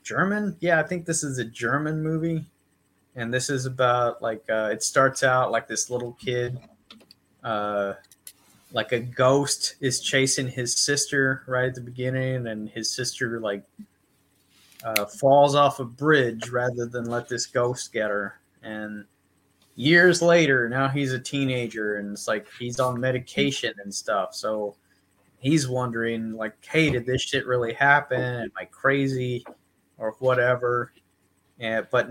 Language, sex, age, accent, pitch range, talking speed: English, male, 20-39, American, 110-140 Hz, 150 wpm